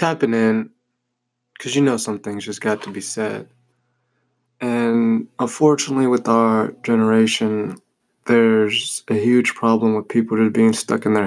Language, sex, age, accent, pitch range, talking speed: English, male, 20-39, American, 110-125 Hz, 150 wpm